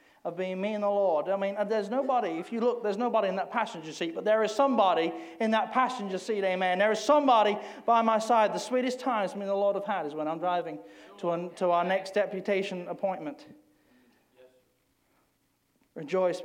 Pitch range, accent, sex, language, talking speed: 195-265 Hz, British, male, English, 200 wpm